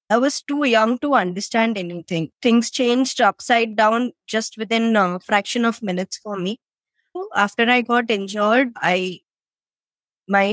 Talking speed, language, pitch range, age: 140 wpm, English, 200-235 Hz, 20-39